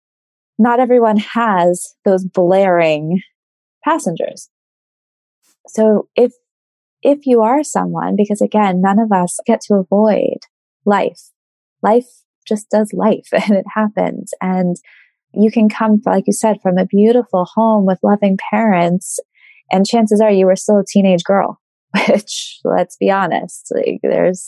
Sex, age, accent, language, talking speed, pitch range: female, 20-39, American, English, 140 wpm, 195-255 Hz